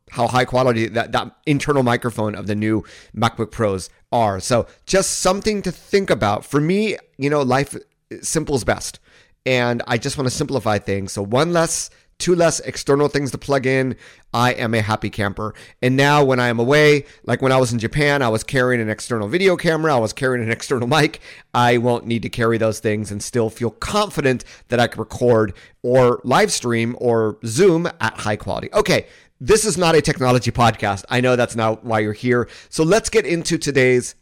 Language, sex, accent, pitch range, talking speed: English, male, American, 115-145 Hz, 200 wpm